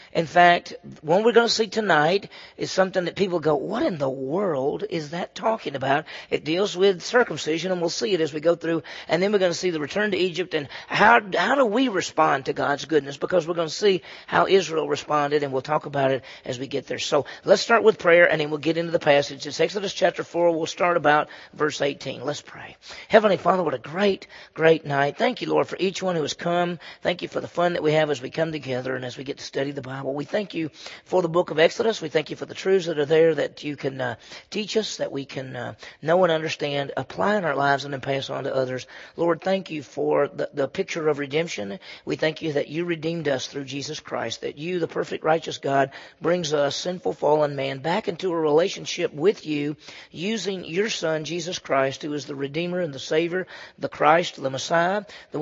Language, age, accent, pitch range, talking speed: English, 40-59, American, 140-180 Hz, 240 wpm